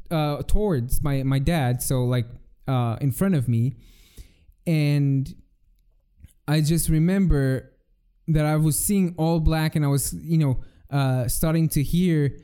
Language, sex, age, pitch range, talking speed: English, male, 20-39, 120-180 Hz, 150 wpm